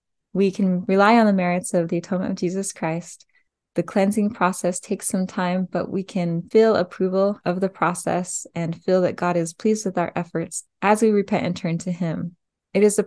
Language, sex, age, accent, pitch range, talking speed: English, female, 10-29, American, 180-215 Hz, 205 wpm